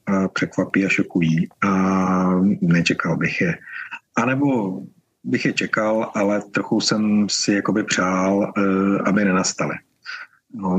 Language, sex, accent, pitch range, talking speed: Czech, male, native, 95-110 Hz, 120 wpm